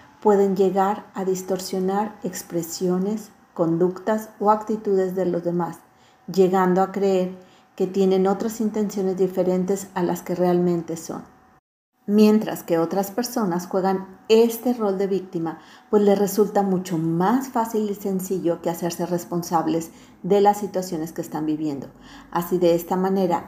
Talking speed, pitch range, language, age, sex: 140 wpm, 175-205 Hz, Spanish, 40-59, female